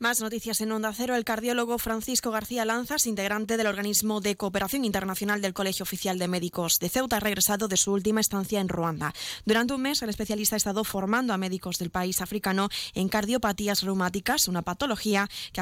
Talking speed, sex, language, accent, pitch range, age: 190 wpm, female, Spanish, Spanish, 185-225 Hz, 20-39